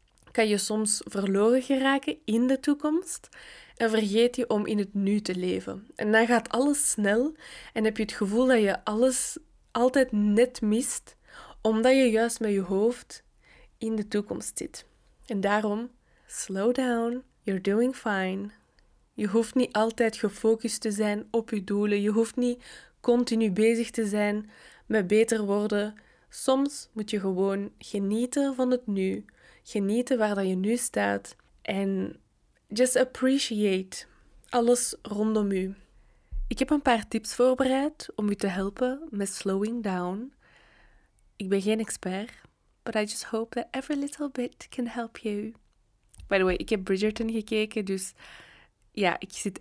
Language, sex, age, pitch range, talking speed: Dutch, female, 10-29, 205-250 Hz, 155 wpm